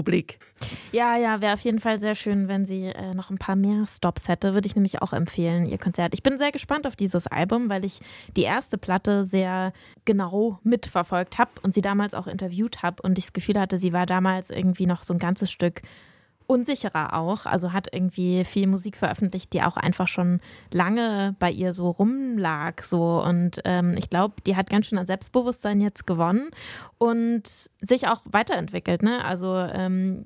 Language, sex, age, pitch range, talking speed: German, female, 20-39, 185-225 Hz, 190 wpm